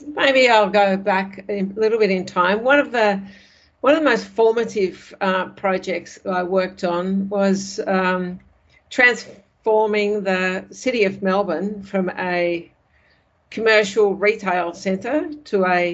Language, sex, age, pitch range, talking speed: English, female, 60-79, 185-210 Hz, 135 wpm